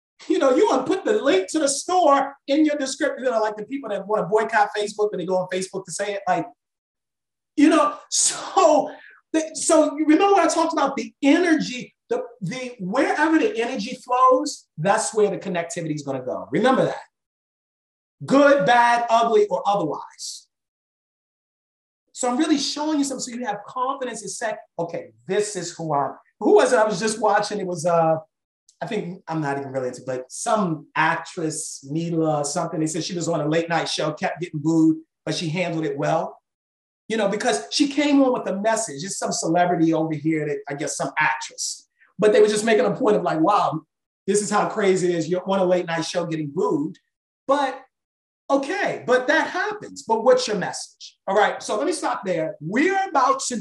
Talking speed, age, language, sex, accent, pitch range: 210 wpm, 30-49, English, male, American, 165-275 Hz